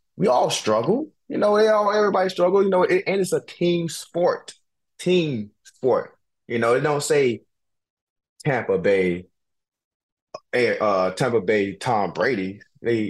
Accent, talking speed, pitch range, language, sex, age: American, 140 wpm, 105-150 Hz, English, male, 20-39